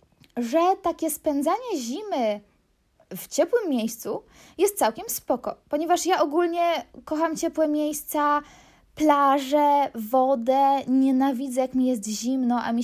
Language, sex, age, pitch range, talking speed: Polish, female, 20-39, 235-315 Hz, 115 wpm